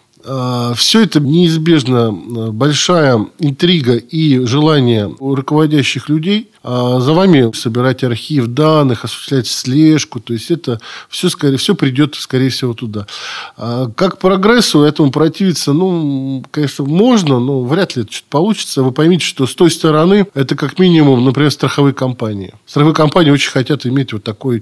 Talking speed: 150 wpm